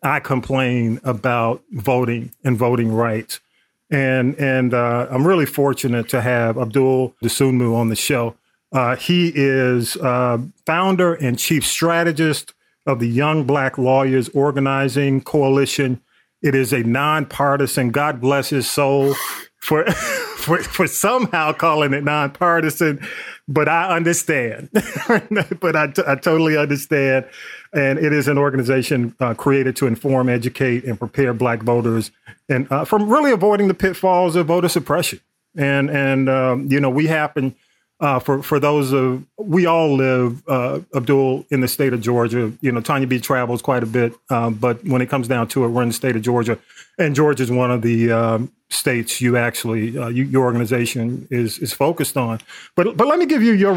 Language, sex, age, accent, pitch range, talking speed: English, male, 40-59, American, 125-150 Hz, 170 wpm